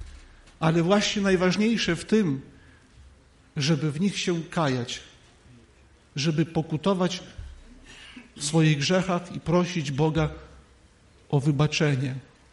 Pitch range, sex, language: 125-180 Hz, male, Polish